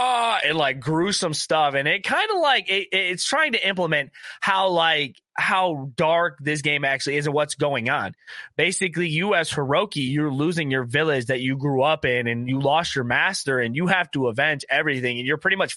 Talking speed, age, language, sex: 210 wpm, 20-39, English, male